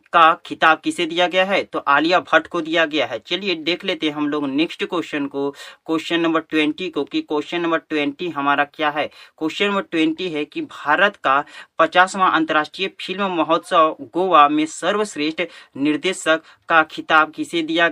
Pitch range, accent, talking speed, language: 155-185 Hz, native, 175 wpm, Hindi